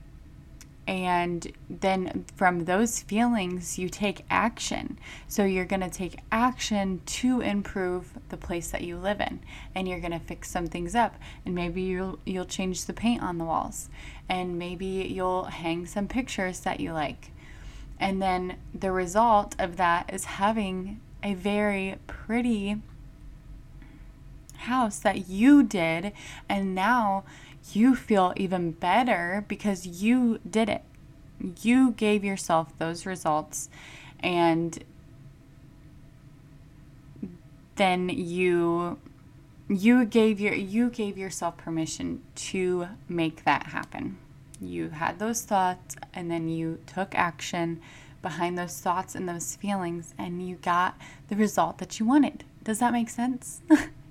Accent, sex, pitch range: American, female, 165-205 Hz